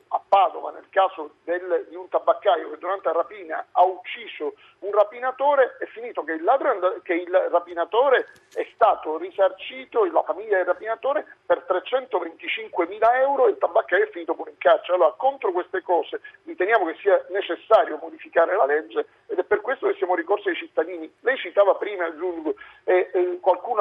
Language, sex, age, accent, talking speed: Italian, male, 50-69, native, 180 wpm